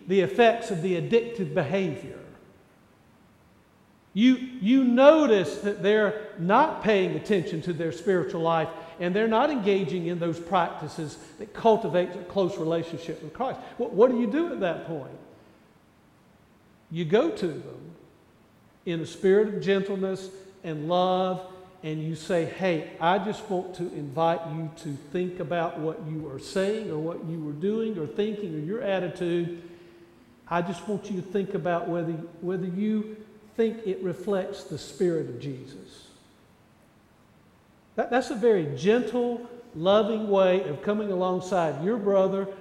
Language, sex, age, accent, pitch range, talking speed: English, male, 50-69, American, 170-220 Hz, 150 wpm